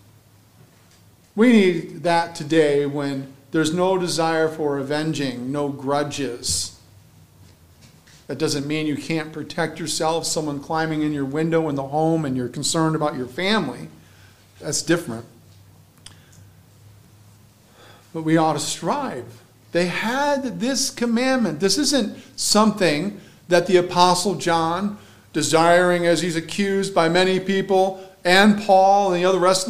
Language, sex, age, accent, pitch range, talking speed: English, male, 50-69, American, 135-190 Hz, 135 wpm